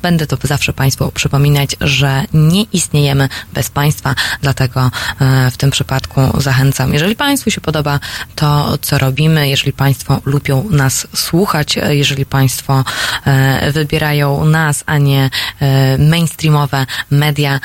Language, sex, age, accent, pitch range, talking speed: Polish, female, 20-39, native, 135-160 Hz, 120 wpm